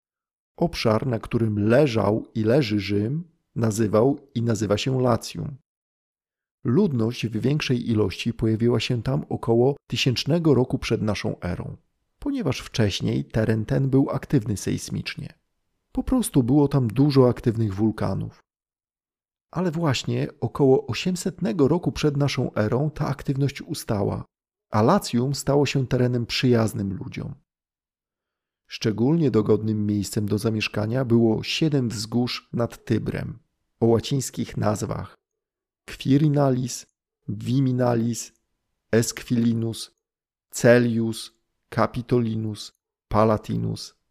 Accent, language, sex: native, Polish, male